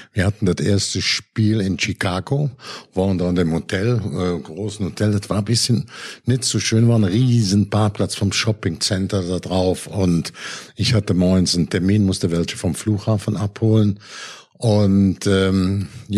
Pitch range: 95-115 Hz